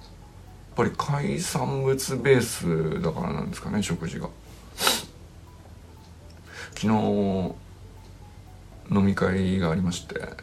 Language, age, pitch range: Japanese, 50-69, 85-110 Hz